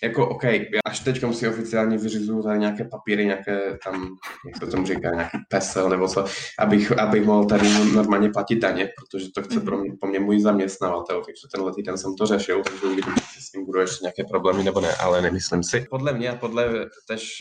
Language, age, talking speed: Czech, 20-39, 210 wpm